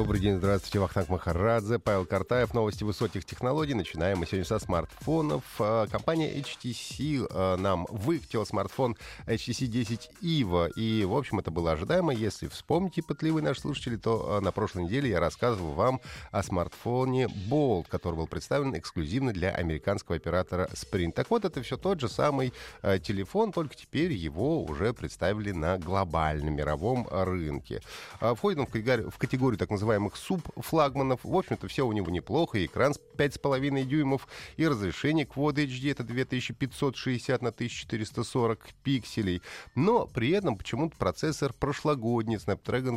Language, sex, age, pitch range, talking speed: Russian, male, 30-49, 90-130 Hz, 145 wpm